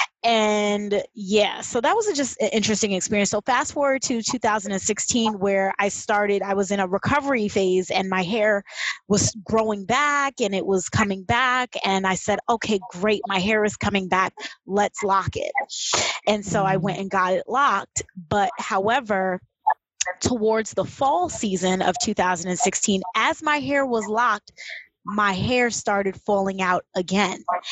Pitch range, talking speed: 190-235 Hz, 160 wpm